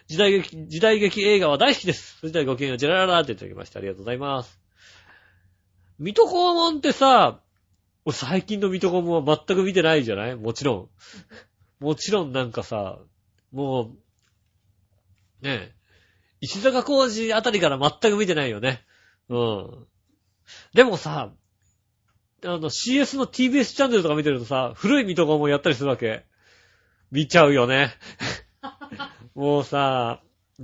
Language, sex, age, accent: Japanese, male, 40-59, native